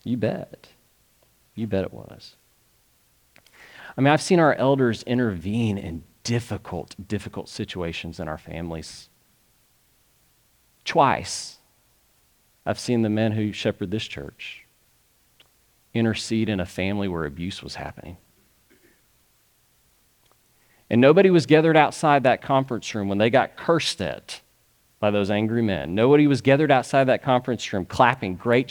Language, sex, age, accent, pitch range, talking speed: English, male, 40-59, American, 90-125 Hz, 130 wpm